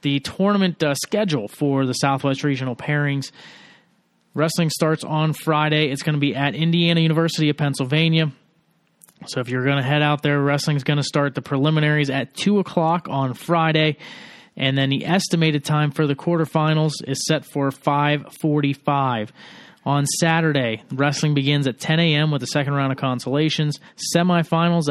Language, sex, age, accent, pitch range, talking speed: English, male, 30-49, American, 135-160 Hz, 165 wpm